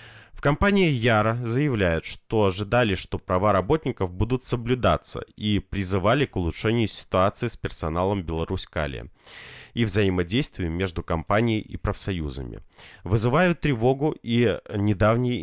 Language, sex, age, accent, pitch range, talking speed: Russian, male, 30-49, native, 85-120 Hz, 110 wpm